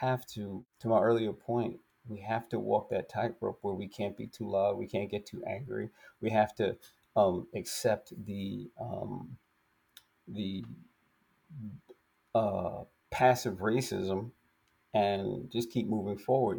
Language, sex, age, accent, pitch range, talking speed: English, male, 40-59, American, 100-125 Hz, 140 wpm